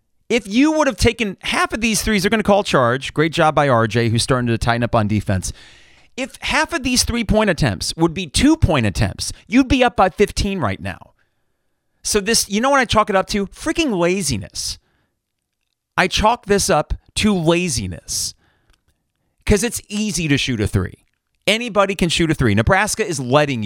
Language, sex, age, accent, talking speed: English, male, 30-49, American, 190 wpm